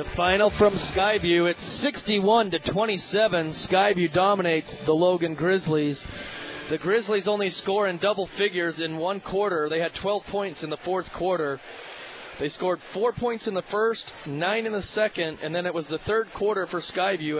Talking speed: 175 wpm